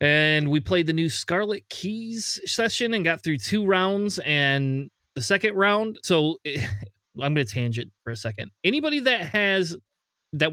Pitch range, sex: 135-180 Hz, male